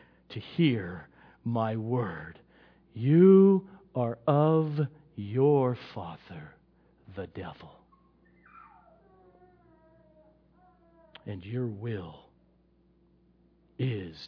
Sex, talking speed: male, 65 wpm